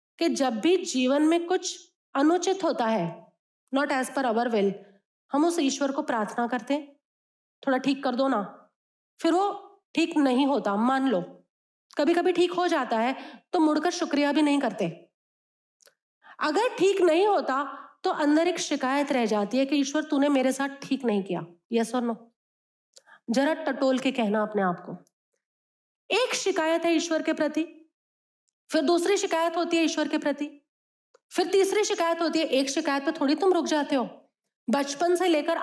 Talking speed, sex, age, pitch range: 170 wpm, female, 30-49, 260-335 Hz